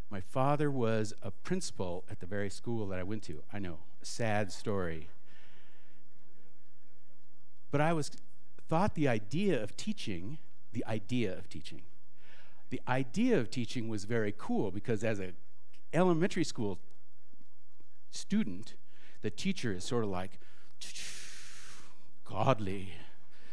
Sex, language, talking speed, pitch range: male, English, 125 wpm, 90-135 Hz